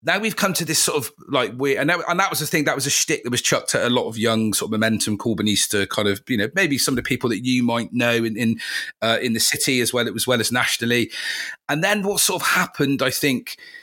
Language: English